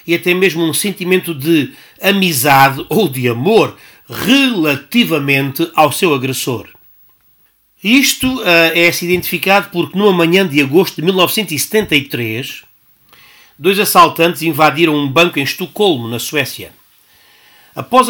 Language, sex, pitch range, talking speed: Portuguese, male, 150-210 Hz, 115 wpm